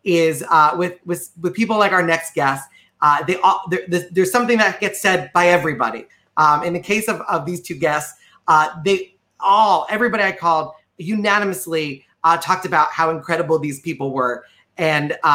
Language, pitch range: English, 165-230 Hz